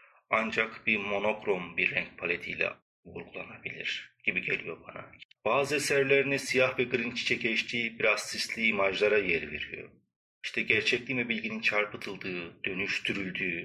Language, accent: English, Turkish